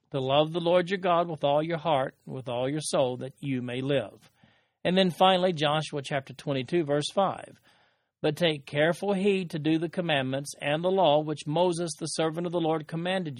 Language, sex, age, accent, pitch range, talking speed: English, male, 50-69, American, 135-175 Hz, 200 wpm